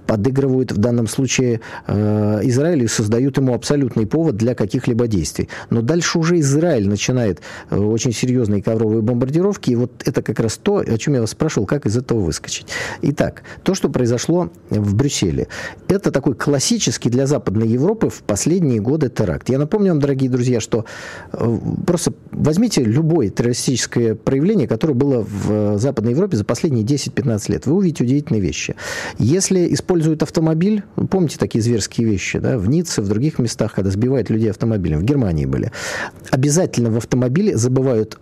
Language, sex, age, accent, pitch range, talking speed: Russian, male, 40-59, native, 110-155 Hz, 165 wpm